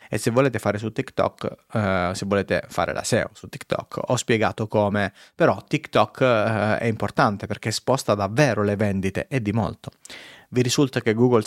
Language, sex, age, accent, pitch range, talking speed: Italian, male, 30-49, native, 100-130 Hz, 170 wpm